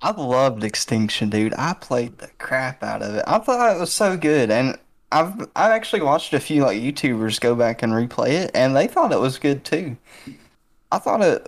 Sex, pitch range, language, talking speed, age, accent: male, 110-125 Hz, English, 215 wpm, 20-39, American